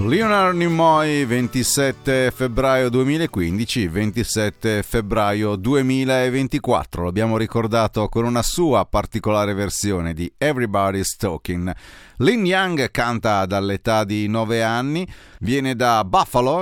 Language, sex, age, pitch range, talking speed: Italian, male, 40-59, 100-130 Hz, 100 wpm